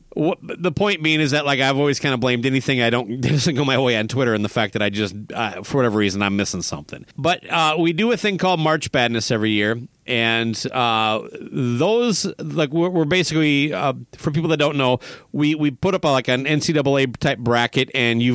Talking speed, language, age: 225 wpm, English, 40-59